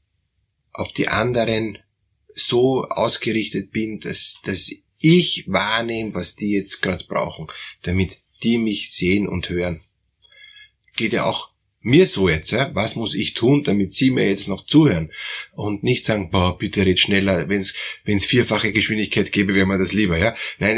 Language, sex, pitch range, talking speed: German, male, 100-135 Hz, 160 wpm